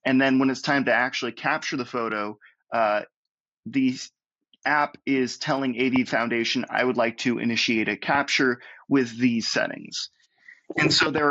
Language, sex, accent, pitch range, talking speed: English, male, American, 115-135 Hz, 160 wpm